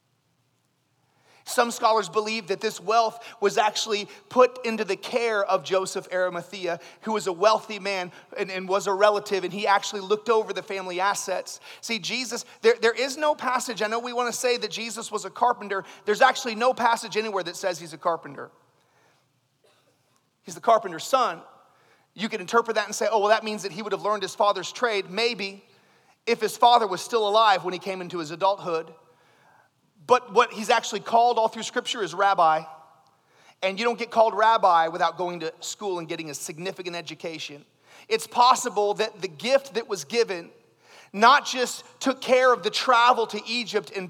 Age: 30-49